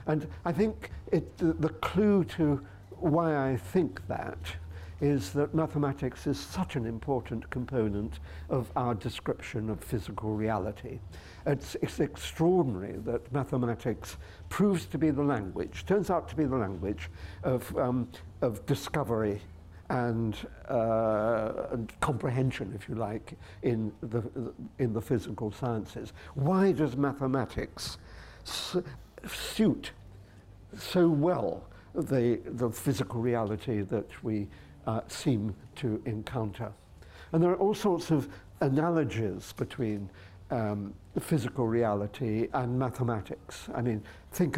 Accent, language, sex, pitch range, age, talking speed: British, English, male, 100-145 Hz, 60-79, 125 wpm